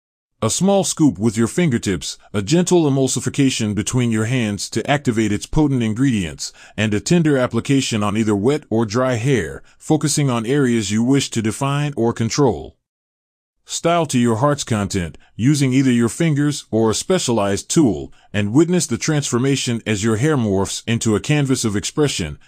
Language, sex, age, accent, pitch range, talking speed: English, male, 30-49, American, 105-145 Hz, 165 wpm